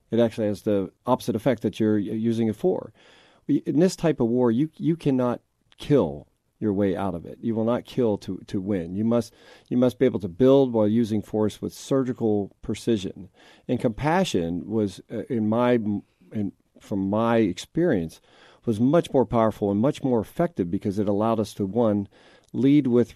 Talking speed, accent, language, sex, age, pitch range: 185 wpm, American, English, male, 40-59, 95-115 Hz